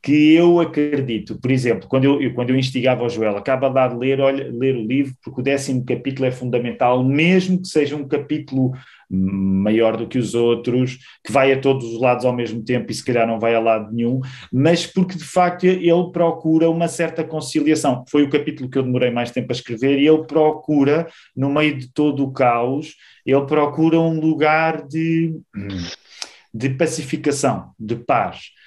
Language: Portuguese